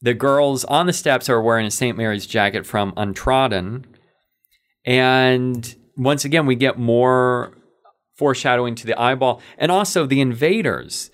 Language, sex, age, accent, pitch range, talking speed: English, male, 40-59, American, 105-140 Hz, 145 wpm